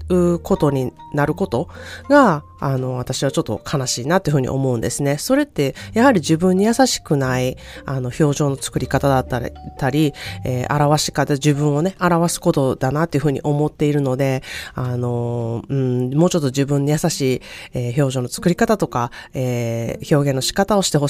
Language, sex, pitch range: Japanese, female, 135-190 Hz